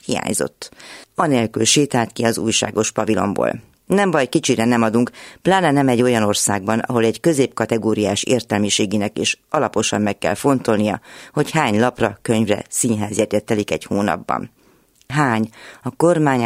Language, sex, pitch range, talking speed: Hungarian, female, 110-135 Hz, 135 wpm